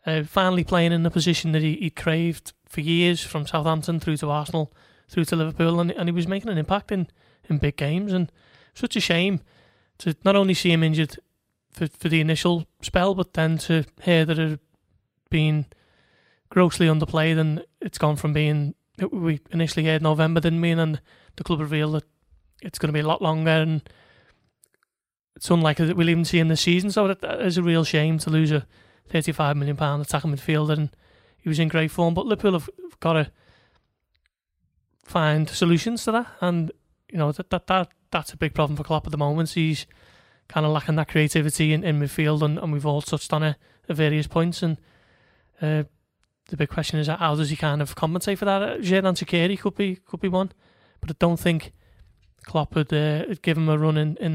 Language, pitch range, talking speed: English, 150-170 Hz, 205 wpm